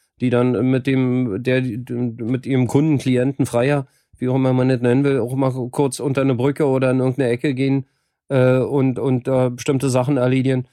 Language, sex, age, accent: German, male, 40-59, German